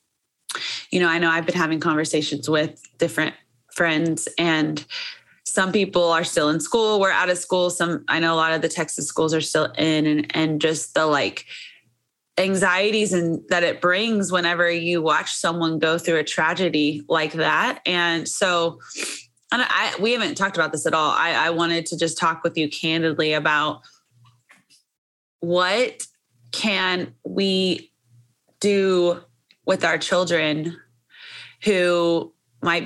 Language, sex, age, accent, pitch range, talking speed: English, female, 20-39, American, 155-180 Hz, 155 wpm